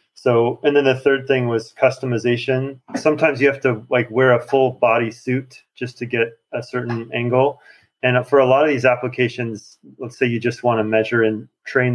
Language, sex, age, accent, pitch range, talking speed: English, male, 30-49, American, 115-130 Hz, 200 wpm